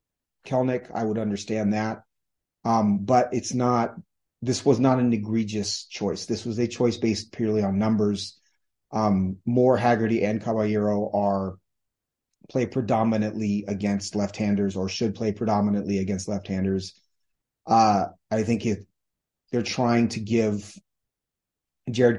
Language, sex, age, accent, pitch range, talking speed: English, male, 30-49, American, 100-120 Hz, 135 wpm